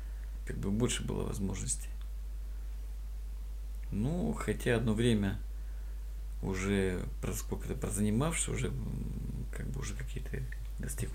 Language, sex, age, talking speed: Russian, male, 50-69, 110 wpm